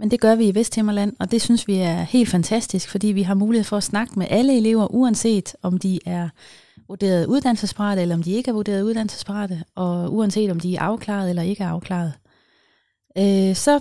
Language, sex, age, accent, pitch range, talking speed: Danish, female, 30-49, native, 185-225 Hz, 205 wpm